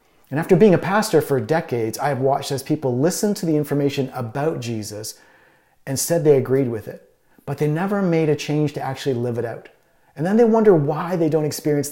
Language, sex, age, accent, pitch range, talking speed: English, male, 40-59, American, 135-170 Hz, 215 wpm